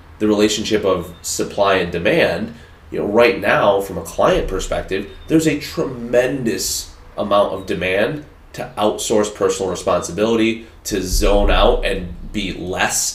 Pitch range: 95-115 Hz